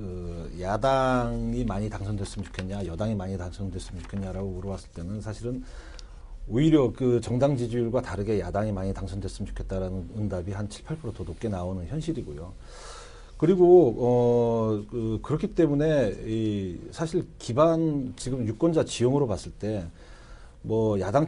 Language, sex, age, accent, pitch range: Korean, male, 40-59, native, 100-135 Hz